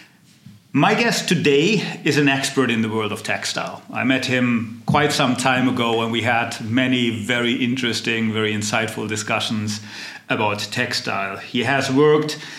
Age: 40-59